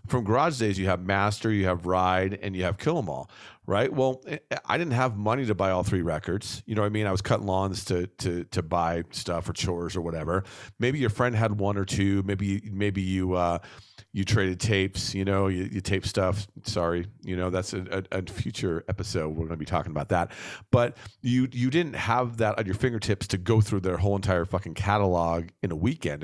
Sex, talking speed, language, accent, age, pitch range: male, 225 wpm, English, American, 40-59, 95-115 Hz